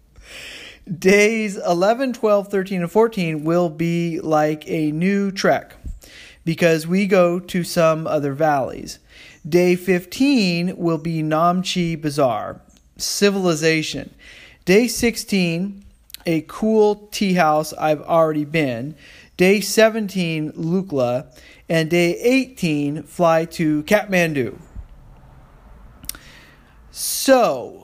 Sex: male